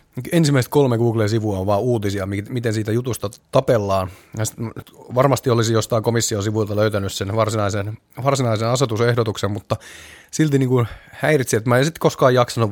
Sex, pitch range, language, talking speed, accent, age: male, 105-130 Hz, Finnish, 145 wpm, native, 30-49